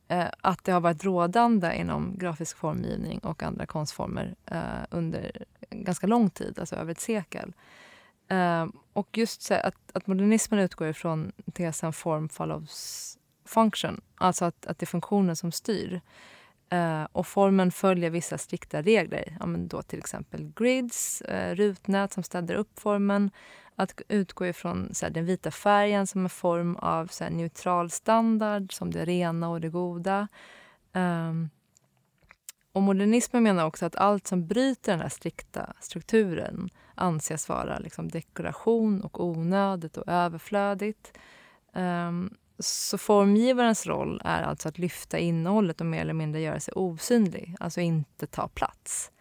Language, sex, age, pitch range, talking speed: Swedish, female, 20-39, 170-205 Hz, 135 wpm